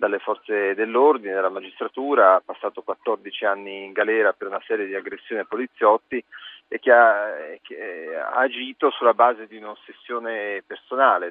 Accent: native